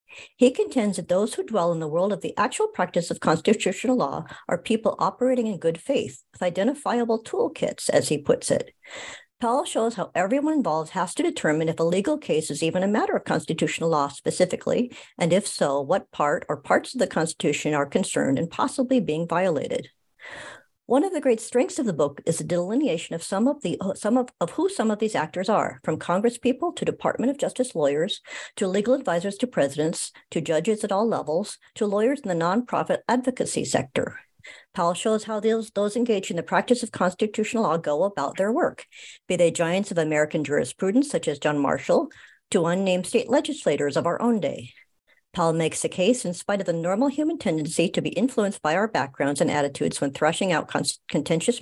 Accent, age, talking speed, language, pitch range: American, 60-79, 200 wpm, English, 165-245 Hz